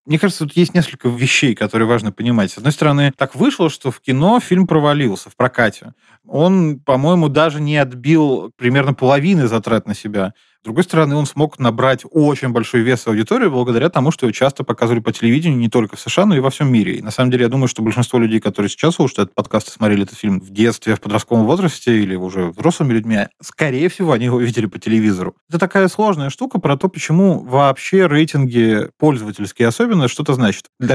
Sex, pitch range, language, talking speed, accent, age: male, 110-150 Hz, Russian, 205 wpm, native, 20-39